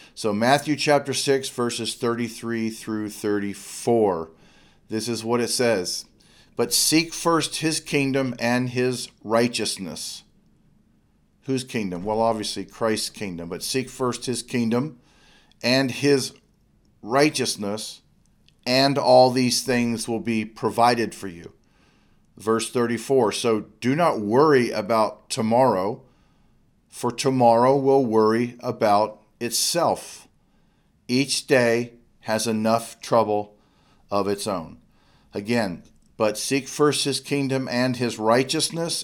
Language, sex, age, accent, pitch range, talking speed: English, male, 40-59, American, 110-130 Hz, 115 wpm